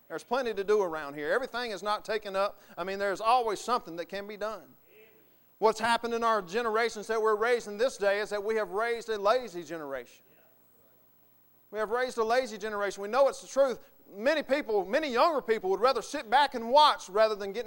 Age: 40-59